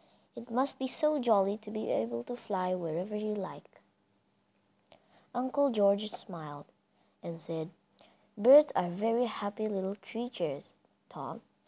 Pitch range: 180-230 Hz